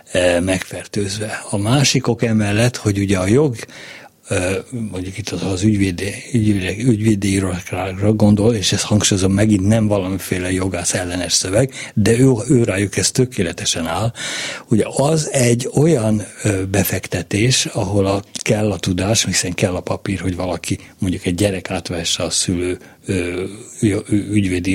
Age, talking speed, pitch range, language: 60-79, 140 wpm, 95-115 Hz, Hungarian